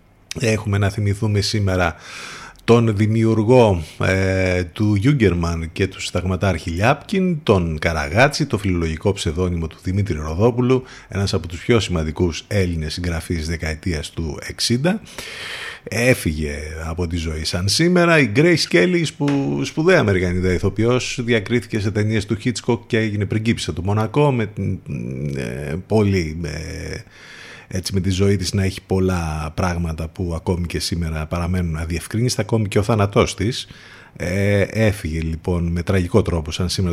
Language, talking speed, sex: Greek, 140 wpm, male